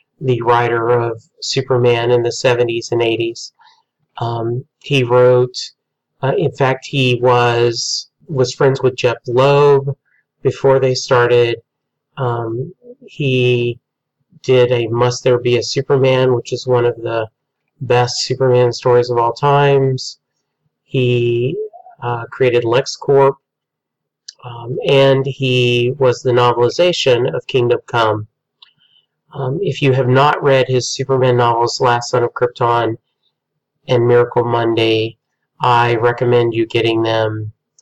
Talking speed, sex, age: 125 wpm, male, 30-49